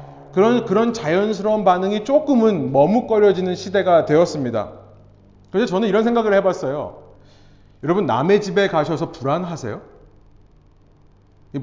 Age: 30-49